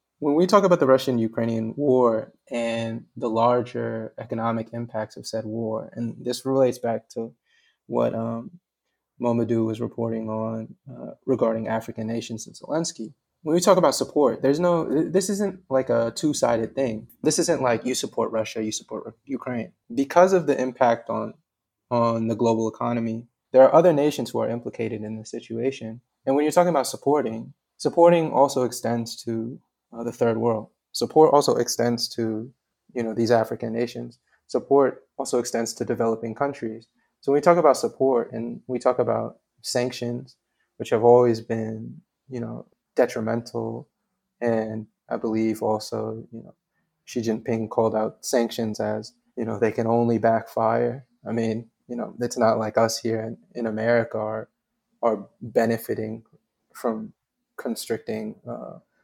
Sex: male